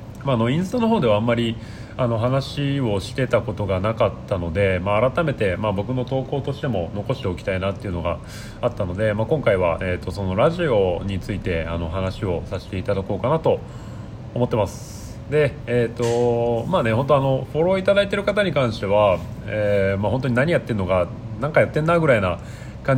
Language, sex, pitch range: Japanese, male, 100-130 Hz